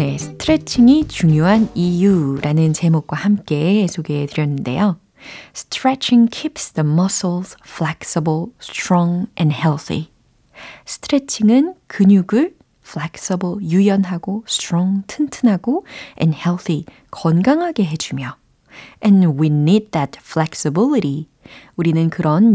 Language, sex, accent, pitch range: Korean, female, native, 160-225 Hz